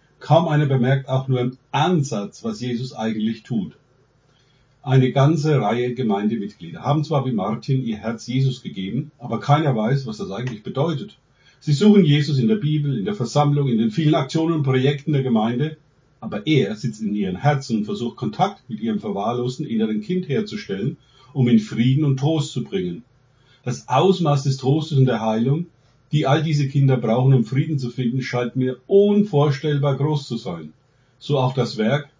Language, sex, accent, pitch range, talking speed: German, male, German, 120-150 Hz, 175 wpm